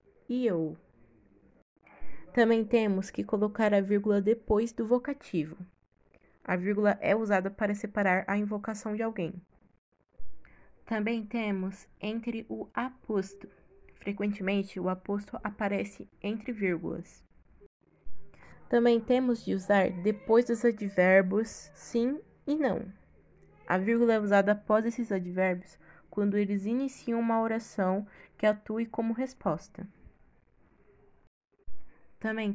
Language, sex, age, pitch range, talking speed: Portuguese, female, 20-39, 195-235 Hz, 110 wpm